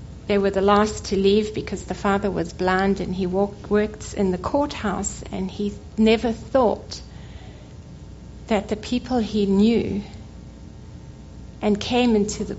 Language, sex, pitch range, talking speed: English, female, 190-210 Hz, 145 wpm